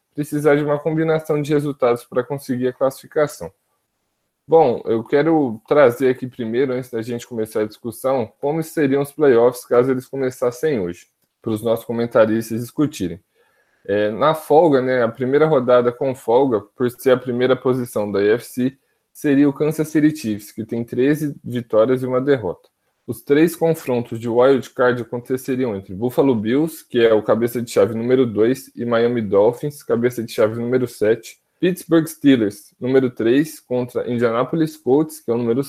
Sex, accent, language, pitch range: male, Brazilian, Portuguese, 120-145 Hz